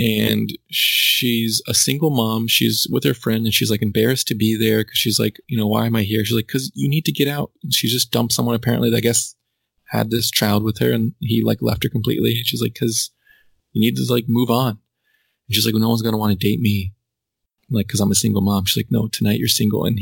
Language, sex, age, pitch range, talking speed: English, male, 20-39, 110-120 Hz, 260 wpm